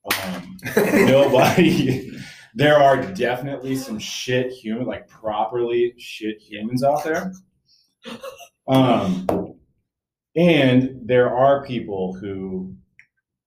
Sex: male